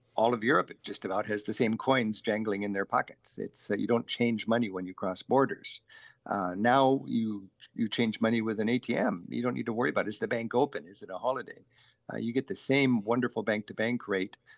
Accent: American